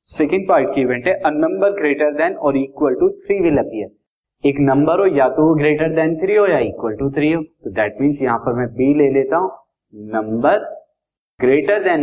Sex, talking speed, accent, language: male, 135 wpm, native, Hindi